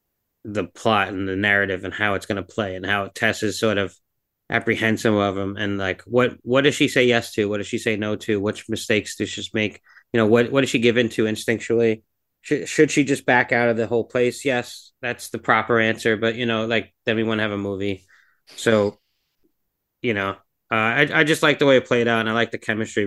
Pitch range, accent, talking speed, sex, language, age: 110-140 Hz, American, 245 wpm, male, English, 30-49